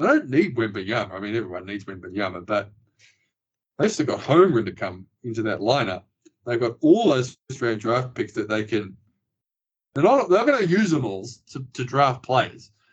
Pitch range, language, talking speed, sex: 105-135 Hz, English, 195 wpm, male